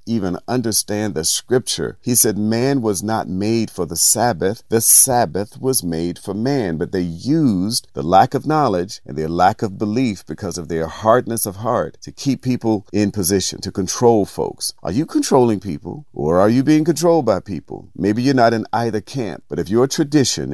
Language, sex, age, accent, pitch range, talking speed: English, male, 50-69, American, 85-115 Hz, 195 wpm